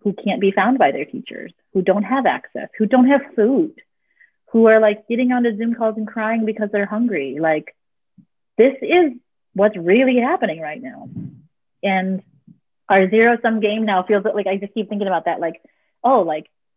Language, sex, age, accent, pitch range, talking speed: English, female, 30-49, American, 175-225 Hz, 190 wpm